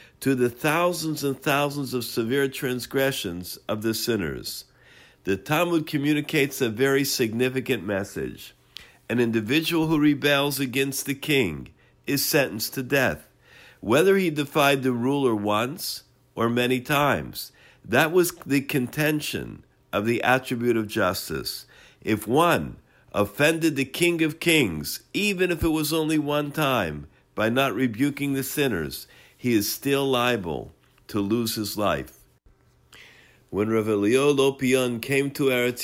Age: 50-69